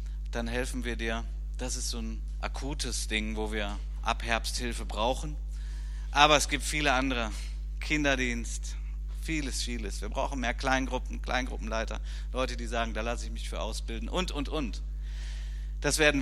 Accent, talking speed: German, 160 wpm